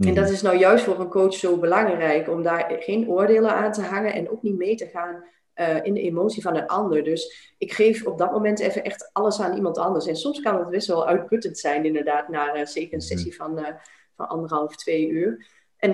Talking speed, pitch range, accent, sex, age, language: 235 wpm, 170-250 Hz, Dutch, female, 30-49, Dutch